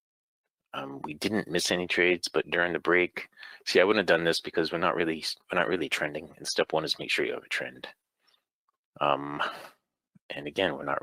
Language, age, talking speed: English, 30-49, 210 wpm